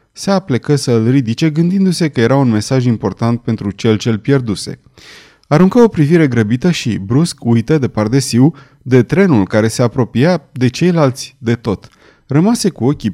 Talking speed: 165 wpm